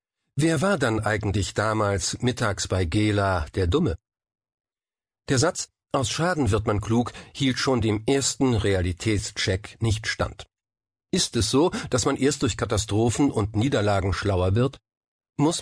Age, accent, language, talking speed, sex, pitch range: 50-69, German, German, 140 wpm, male, 100-135 Hz